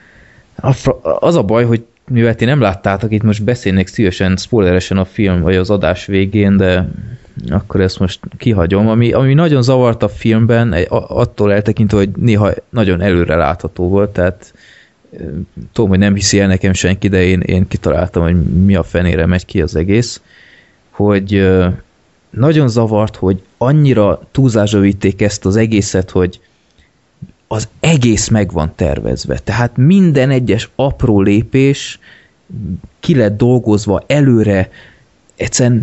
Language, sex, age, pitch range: Hungarian, male, 20-39, 95-120 Hz